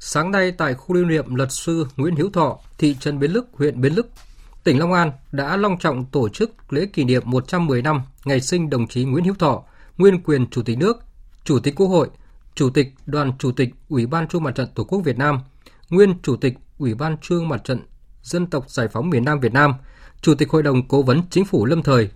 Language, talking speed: Vietnamese, 235 wpm